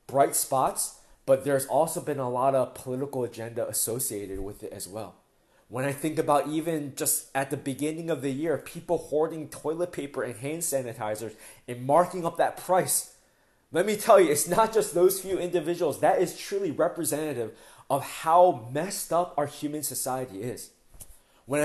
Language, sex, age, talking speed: English, male, 20-39, 175 wpm